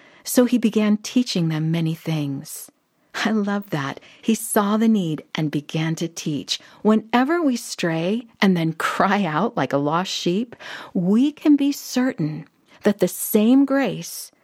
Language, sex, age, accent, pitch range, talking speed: English, female, 50-69, American, 160-235 Hz, 155 wpm